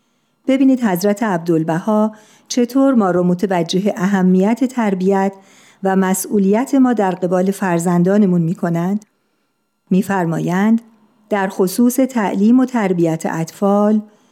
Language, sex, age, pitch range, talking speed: Persian, female, 50-69, 180-225 Hz, 95 wpm